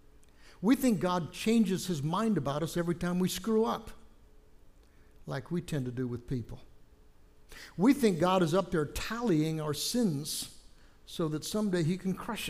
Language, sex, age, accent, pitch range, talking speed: English, male, 60-79, American, 130-180 Hz, 170 wpm